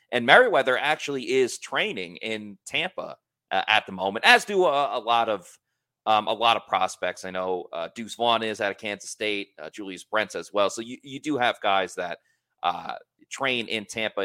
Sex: male